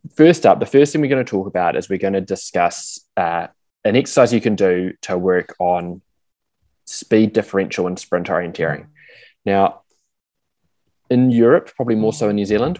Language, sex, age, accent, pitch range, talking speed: English, male, 20-39, Australian, 95-110 Hz, 180 wpm